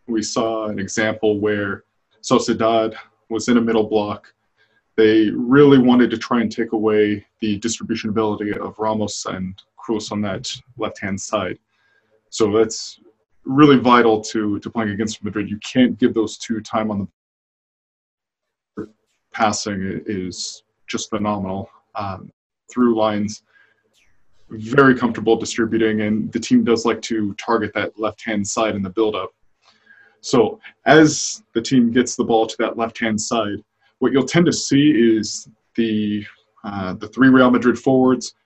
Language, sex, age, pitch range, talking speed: English, male, 20-39, 105-120 Hz, 145 wpm